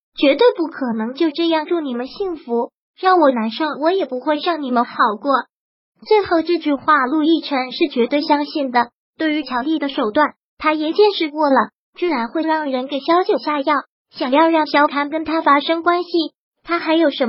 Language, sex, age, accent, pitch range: Chinese, male, 20-39, native, 270-335 Hz